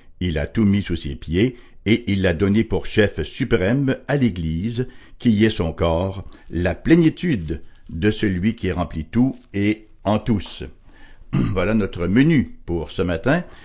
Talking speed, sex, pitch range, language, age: 165 wpm, male, 90-130 Hz, English, 60-79